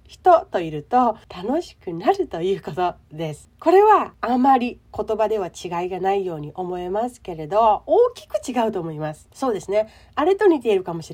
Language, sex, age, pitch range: Japanese, female, 40-59, 185-300 Hz